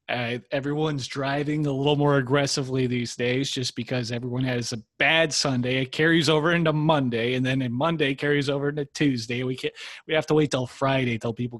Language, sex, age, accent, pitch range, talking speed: English, male, 30-49, American, 105-135 Hz, 200 wpm